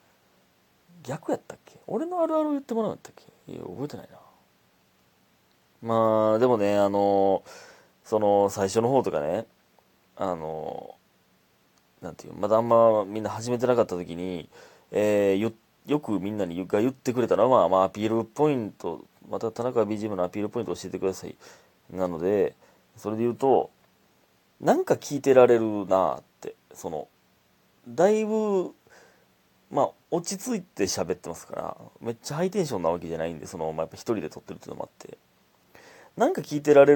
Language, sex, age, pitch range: Japanese, male, 30-49, 95-125 Hz